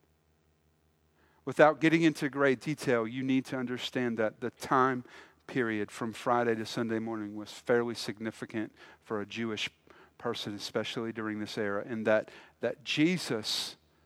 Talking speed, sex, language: 140 wpm, male, English